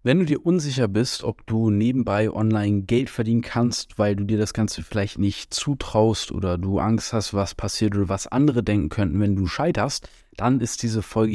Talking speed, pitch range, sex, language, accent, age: 200 wpm, 105-120 Hz, male, German, German, 20-39